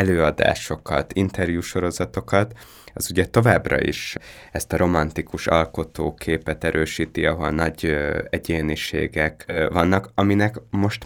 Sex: male